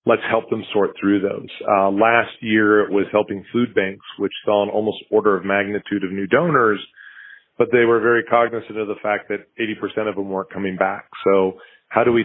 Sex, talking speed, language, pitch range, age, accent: male, 210 wpm, English, 100-110 Hz, 40-59, American